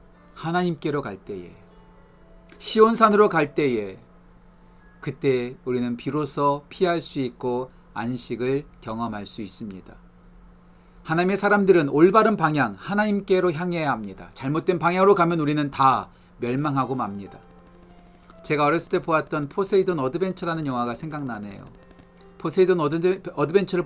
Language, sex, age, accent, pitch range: Korean, male, 40-59, native, 125-180 Hz